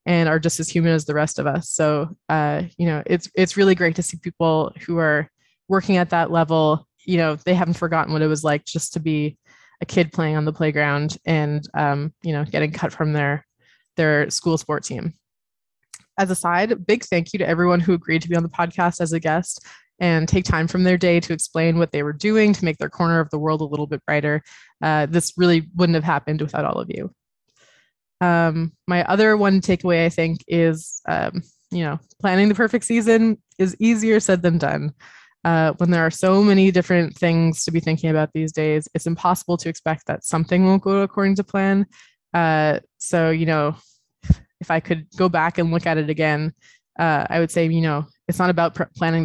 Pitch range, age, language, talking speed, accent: 155-175 Hz, 20-39, English, 215 wpm, American